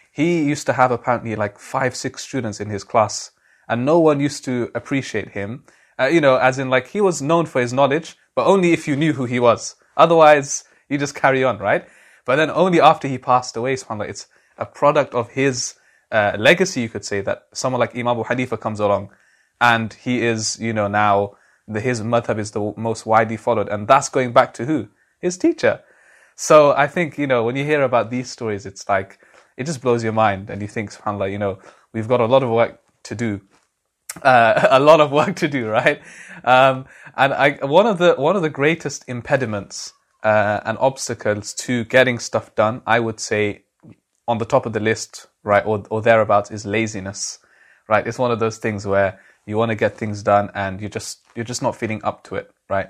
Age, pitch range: 20-39, 105-135 Hz